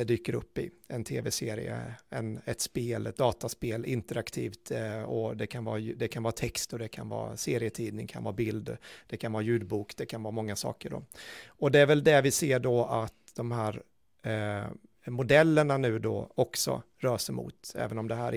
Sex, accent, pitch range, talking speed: male, native, 110-135 Hz, 190 wpm